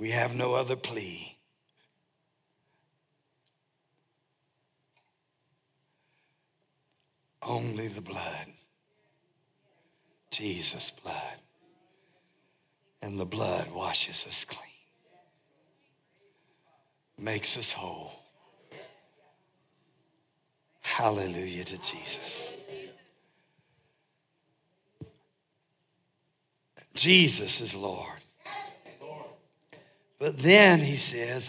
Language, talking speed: English, 55 wpm